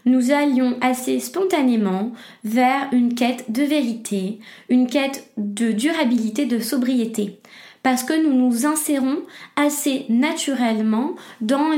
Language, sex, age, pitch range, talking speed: French, female, 20-39, 225-265 Hz, 115 wpm